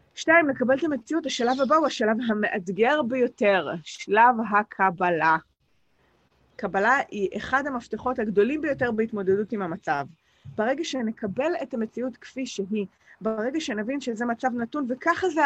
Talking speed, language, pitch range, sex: 130 wpm, English, 185-250 Hz, female